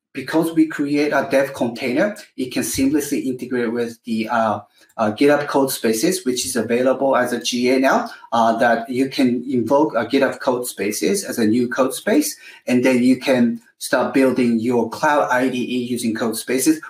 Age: 30-49